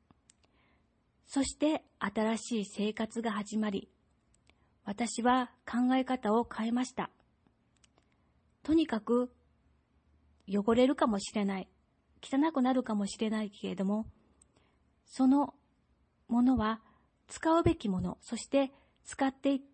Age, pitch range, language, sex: 40-59, 205-265 Hz, Japanese, female